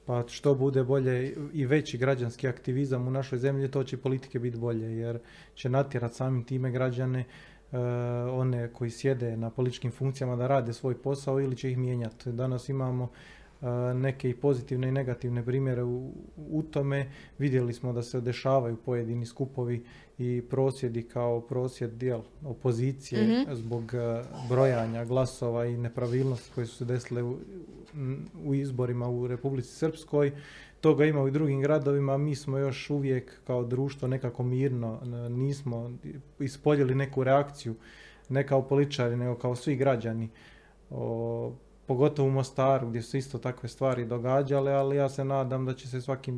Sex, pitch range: male, 120-135 Hz